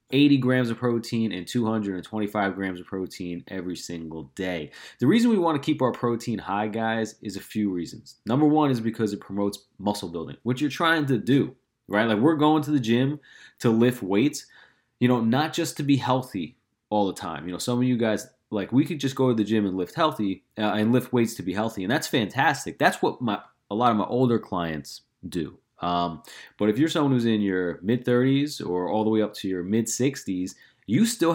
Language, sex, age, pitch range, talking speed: English, male, 30-49, 100-130 Hz, 220 wpm